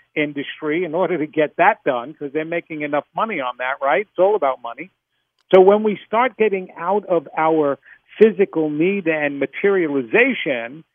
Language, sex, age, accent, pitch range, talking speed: English, male, 50-69, American, 155-190 Hz, 170 wpm